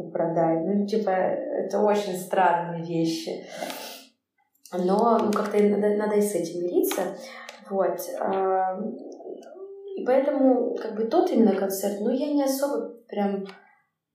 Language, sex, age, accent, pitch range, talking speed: Russian, female, 20-39, native, 180-210 Hz, 125 wpm